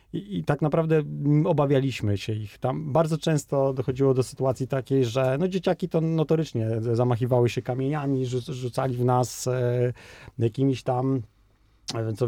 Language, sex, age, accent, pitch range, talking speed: Polish, male, 30-49, native, 115-140 Hz, 130 wpm